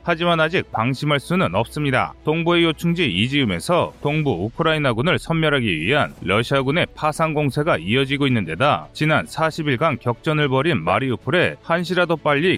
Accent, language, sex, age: native, Korean, male, 30-49